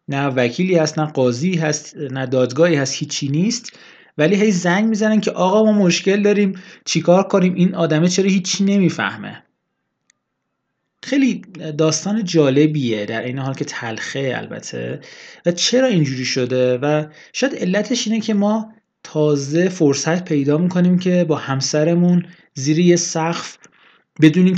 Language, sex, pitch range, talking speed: Persian, male, 150-195 Hz, 135 wpm